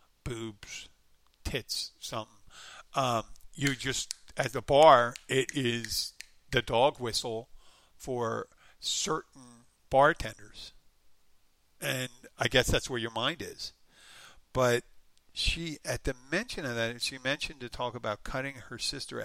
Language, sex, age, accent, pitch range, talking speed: English, male, 50-69, American, 105-130 Hz, 125 wpm